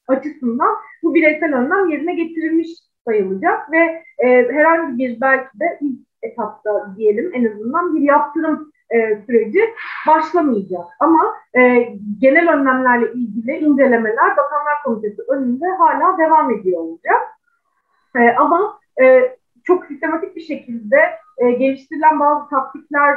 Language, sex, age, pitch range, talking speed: Turkish, female, 30-49, 230-305 Hz, 120 wpm